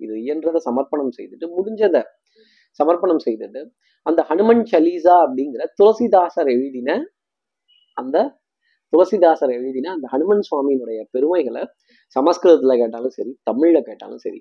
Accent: native